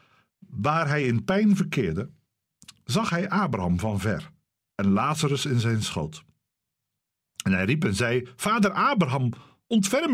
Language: Dutch